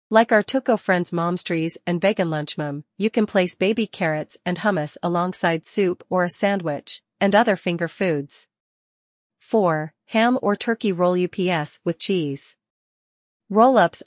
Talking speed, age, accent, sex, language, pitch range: 145 wpm, 40-59, American, female, English, 165-205 Hz